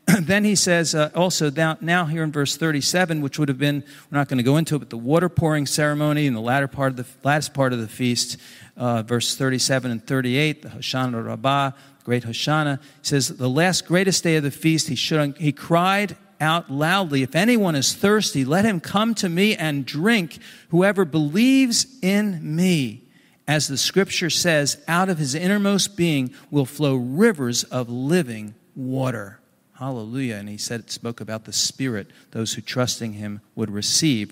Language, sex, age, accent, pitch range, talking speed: English, male, 50-69, American, 125-170 Hz, 185 wpm